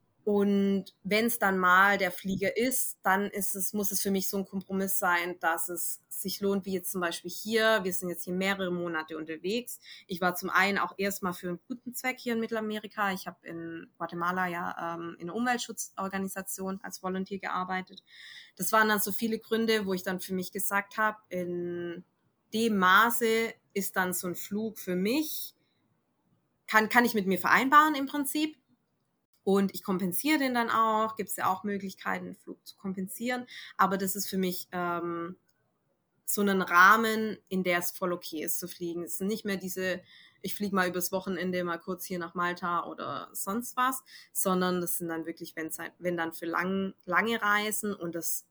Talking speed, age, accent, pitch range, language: 190 wpm, 20-39, German, 180-215 Hz, German